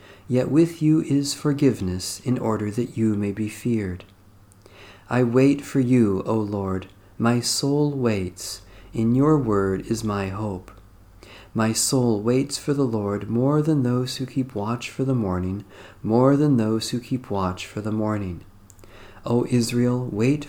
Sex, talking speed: male, 160 wpm